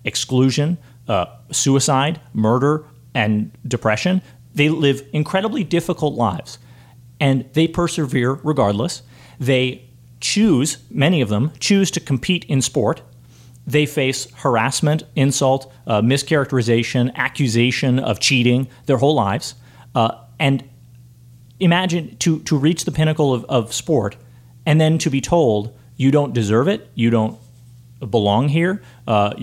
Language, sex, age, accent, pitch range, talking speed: English, male, 40-59, American, 120-150 Hz, 125 wpm